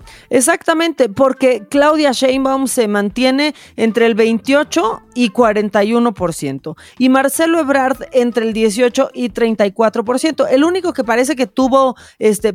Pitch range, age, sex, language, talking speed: 210-260 Hz, 30-49, female, Spanish, 125 wpm